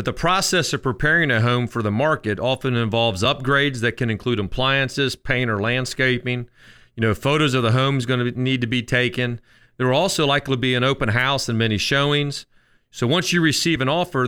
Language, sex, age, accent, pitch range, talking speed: English, male, 40-59, American, 120-145 Hz, 210 wpm